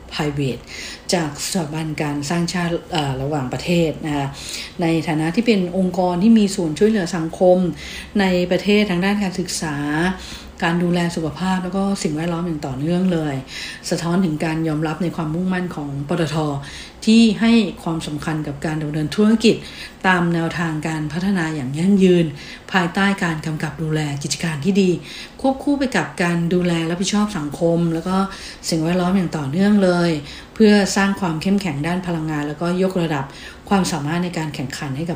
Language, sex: English, female